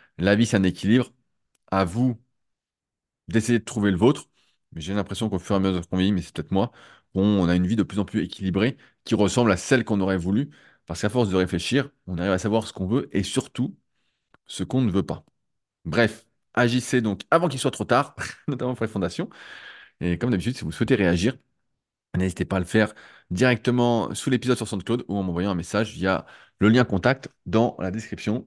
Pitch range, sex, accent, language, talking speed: 95-125 Hz, male, French, French, 215 wpm